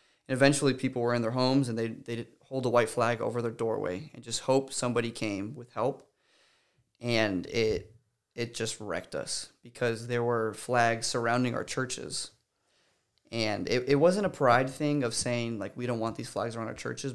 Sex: male